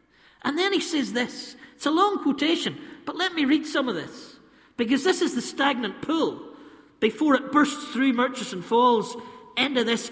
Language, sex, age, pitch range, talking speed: English, male, 50-69, 240-315 Hz, 180 wpm